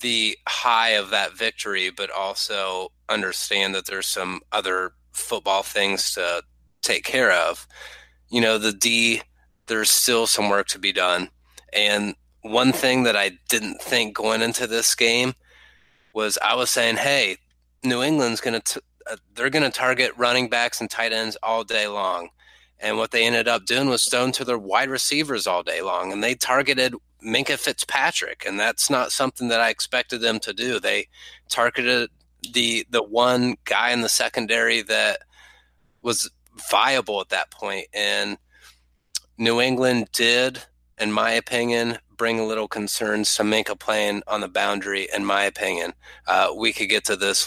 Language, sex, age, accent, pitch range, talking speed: English, male, 30-49, American, 100-125 Hz, 165 wpm